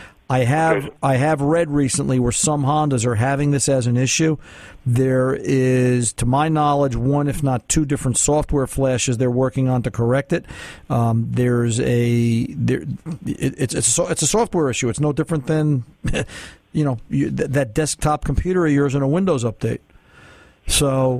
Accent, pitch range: American, 130-155 Hz